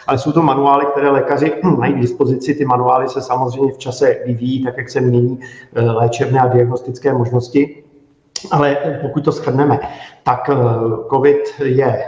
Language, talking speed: Czech, 155 wpm